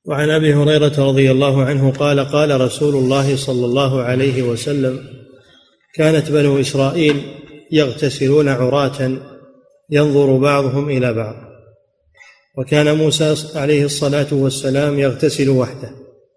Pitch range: 135-150 Hz